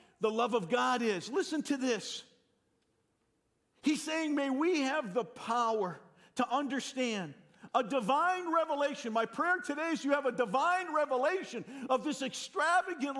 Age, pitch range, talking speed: 50-69, 235-300 Hz, 145 wpm